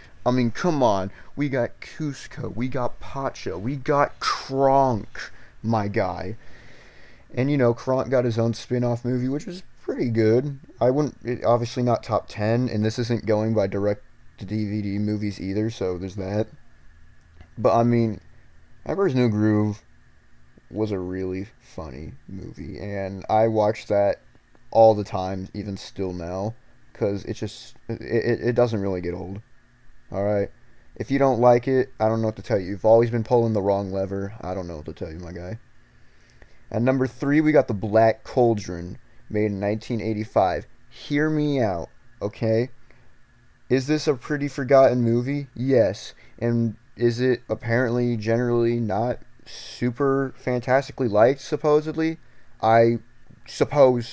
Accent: American